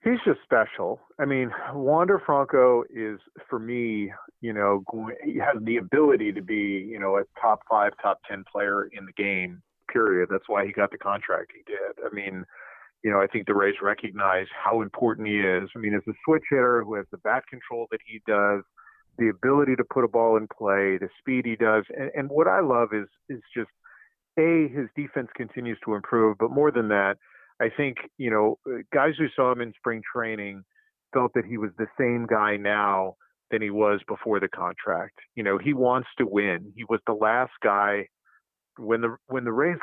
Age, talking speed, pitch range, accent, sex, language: 40-59, 205 wpm, 100-130 Hz, American, male, English